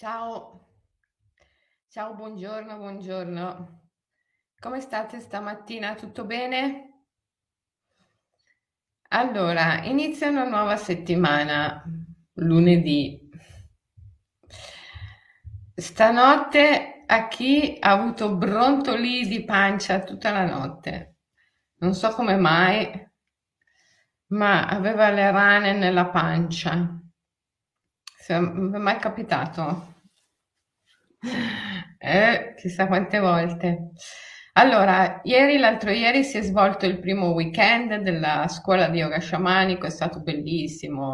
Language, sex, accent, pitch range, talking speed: Italian, female, native, 165-220 Hz, 90 wpm